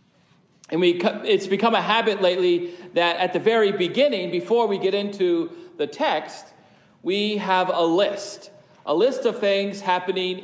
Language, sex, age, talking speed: English, male, 40-59, 155 wpm